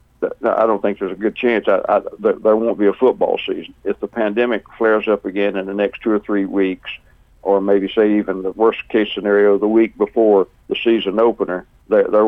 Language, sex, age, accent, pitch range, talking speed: English, male, 60-79, American, 100-120 Hz, 210 wpm